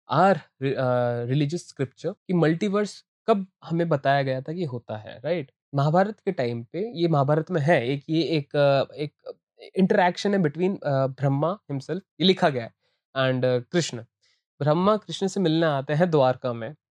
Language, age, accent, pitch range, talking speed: Hindi, 20-39, native, 130-175 Hz, 105 wpm